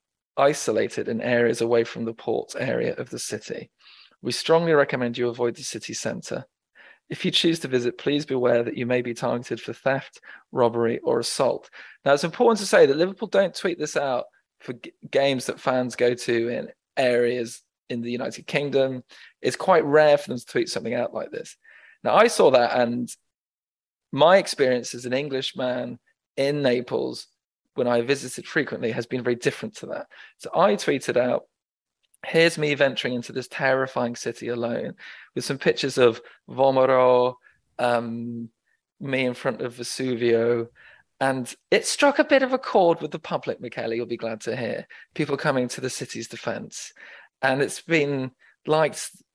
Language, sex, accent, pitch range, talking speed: English, male, British, 120-145 Hz, 175 wpm